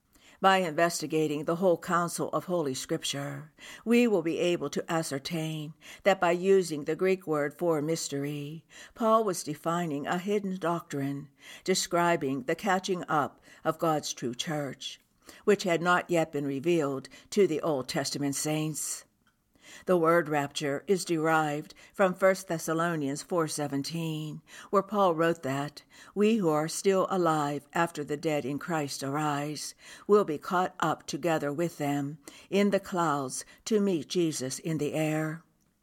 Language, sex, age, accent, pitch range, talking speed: English, female, 60-79, American, 145-175 Hz, 145 wpm